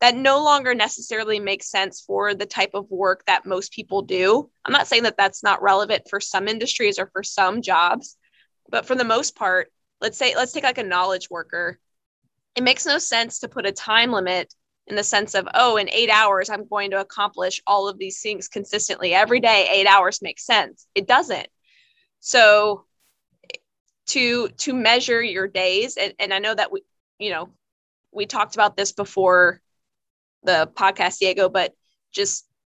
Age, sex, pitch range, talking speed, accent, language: 20-39, female, 190-230 Hz, 185 wpm, American, English